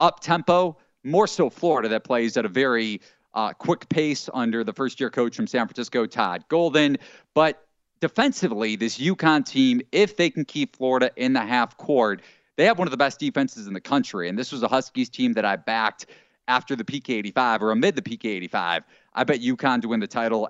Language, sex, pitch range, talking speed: English, male, 115-185 Hz, 200 wpm